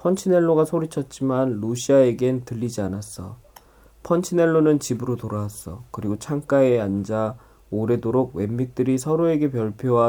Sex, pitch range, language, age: male, 105-145 Hz, Korean, 20-39